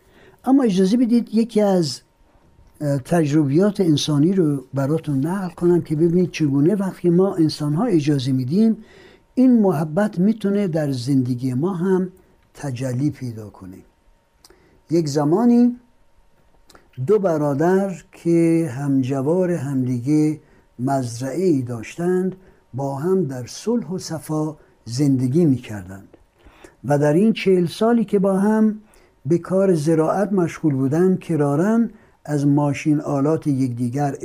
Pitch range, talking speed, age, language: 140-185 Hz, 110 wpm, 60-79, Persian